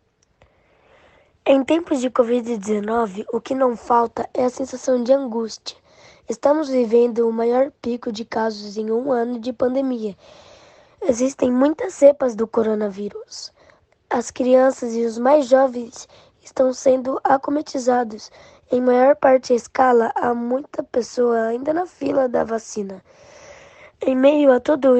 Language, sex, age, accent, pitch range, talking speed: Portuguese, female, 10-29, Brazilian, 235-280 Hz, 135 wpm